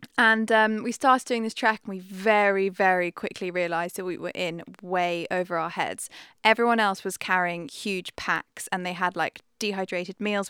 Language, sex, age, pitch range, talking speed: English, female, 20-39, 180-220 Hz, 190 wpm